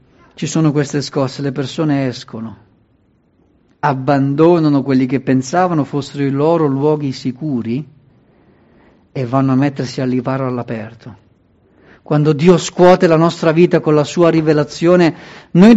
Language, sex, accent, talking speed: Italian, male, native, 130 wpm